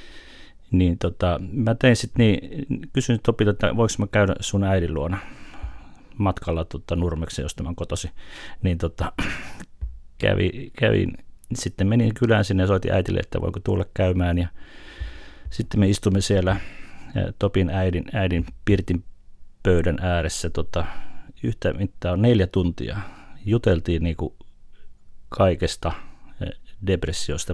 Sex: male